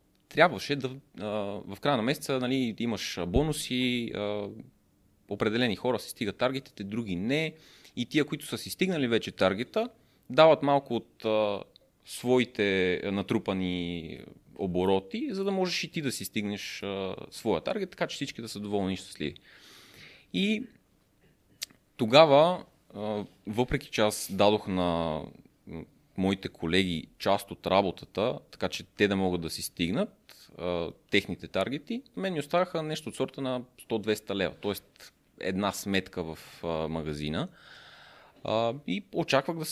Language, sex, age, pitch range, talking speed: Bulgarian, male, 30-49, 95-155 Hz, 135 wpm